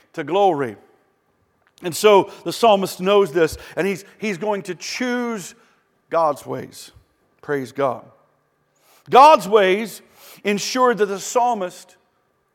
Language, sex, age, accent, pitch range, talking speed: English, male, 50-69, American, 180-235 Hz, 115 wpm